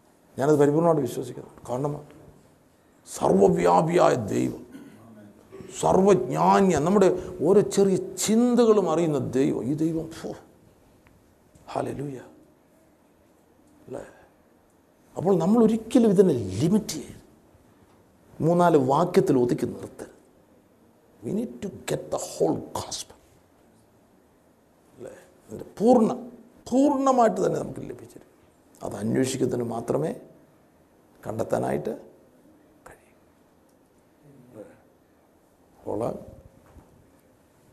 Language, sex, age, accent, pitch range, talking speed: Malayalam, male, 50-69, native, 130-200 Hz, 60 wpm